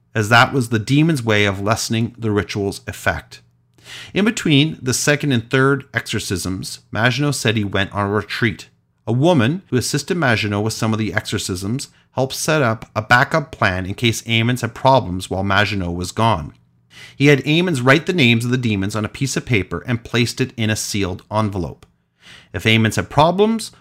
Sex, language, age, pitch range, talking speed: male, English, 40-59, 100-125 Hz, 190 wpm